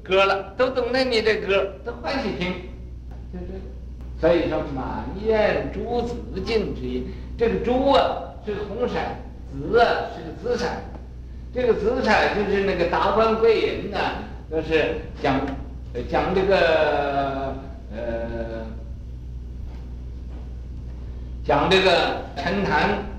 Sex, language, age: male, Chinese, 60-79